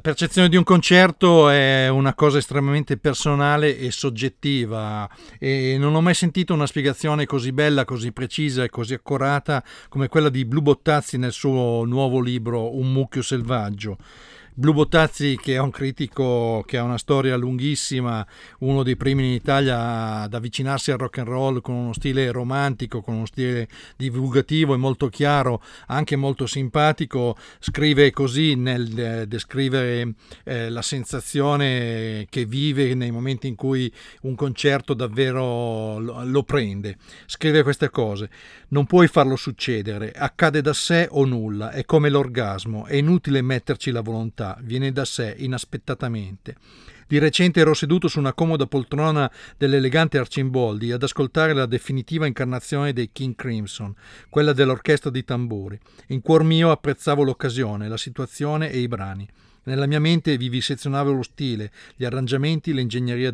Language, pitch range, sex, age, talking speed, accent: Italian, 120-145 Hz, male, 50-69, 150 wpm, native